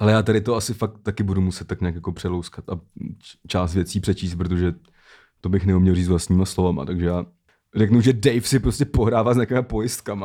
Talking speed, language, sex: 210 wpm, Czech, male